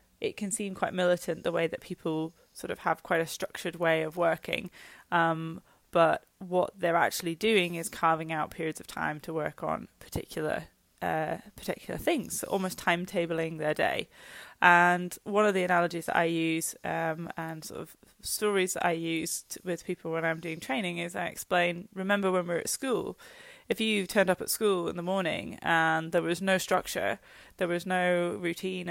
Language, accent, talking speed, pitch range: English, British, 190 wpm, 165-190 Hz